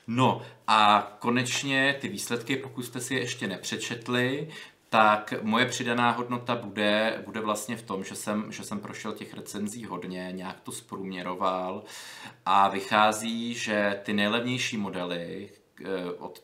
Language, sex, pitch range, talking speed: Czech, male, 95-110 Hz, 135 wpm